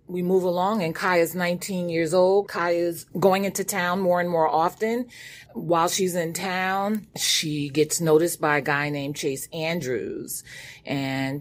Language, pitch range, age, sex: English, 140-175 Hz, 30-49, female